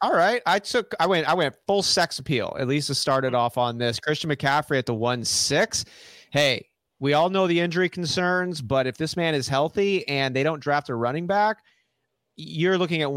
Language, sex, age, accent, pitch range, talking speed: English, male, 30-49, American, 120-150 Hz, 215 wpm